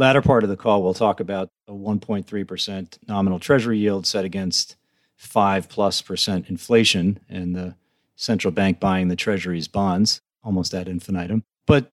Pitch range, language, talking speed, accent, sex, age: 95-125 Hz, English, 155 wpm, American, male, 40-59